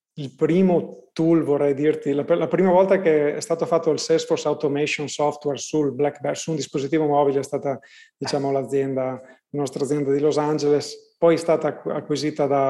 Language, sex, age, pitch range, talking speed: Italian, male, 30-49, 140-155 Hz, 190 wpm